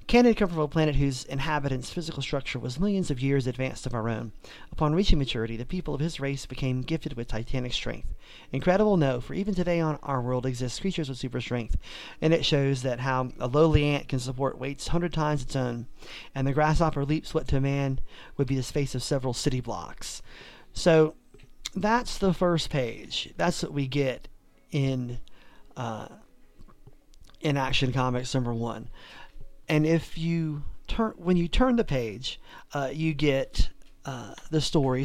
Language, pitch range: English, 125-155 Hz